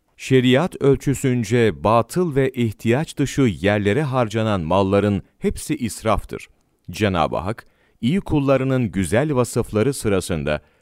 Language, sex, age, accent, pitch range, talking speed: Turkish, male, 40-59, native, 100-130 Hz, 100 wpm